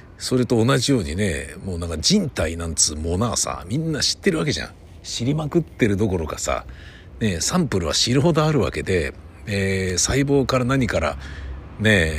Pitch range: 85-125 Hz